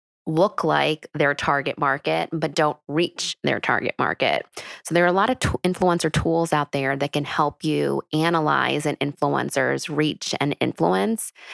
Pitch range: 145-170 Hz